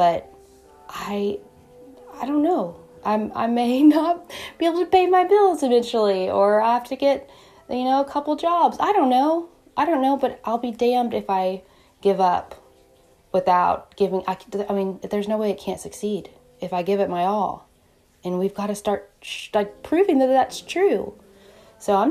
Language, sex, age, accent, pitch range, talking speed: English, female, 20-39, American, 180-240 Hz, 185 wpm